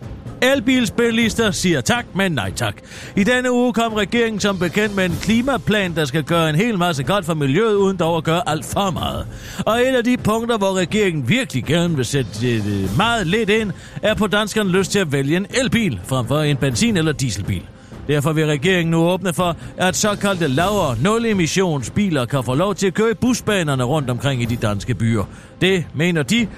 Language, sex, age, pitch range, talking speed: Danish, male, 40-59, 135-210 Hz, 195 wpm